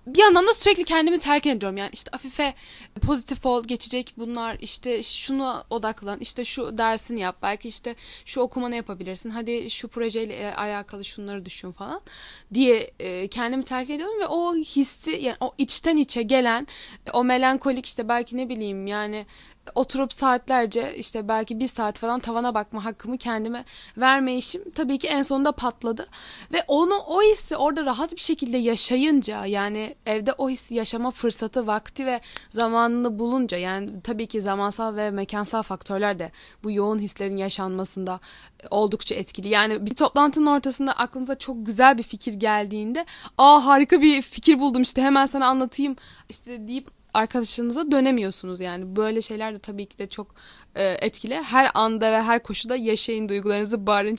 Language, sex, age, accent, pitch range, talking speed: Turkish, female, 10-29, native, 215-265 Hz, 160 wpm